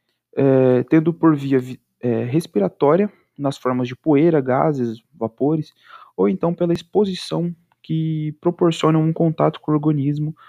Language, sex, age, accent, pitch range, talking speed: Portuguese, male, 20-39, Brazilian, 140-175 Hz, 120 wpm